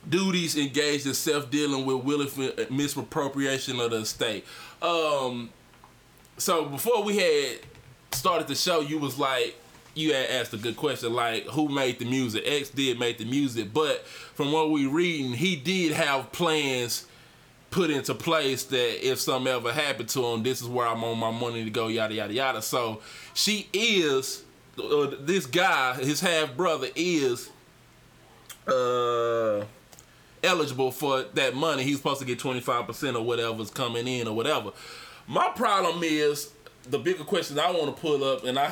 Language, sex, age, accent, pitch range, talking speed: English, male, 20-39, American, 125-165 Hz, 165 wpm